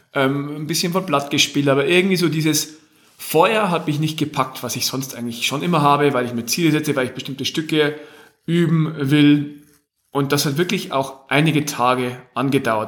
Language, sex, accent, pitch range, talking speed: German, male, German, 130-160 Hz, 185 wpm